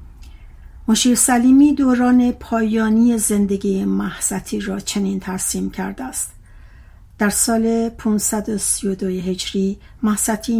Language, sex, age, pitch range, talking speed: Persian, female, 60-79, 185-225 Hz, 90 wpm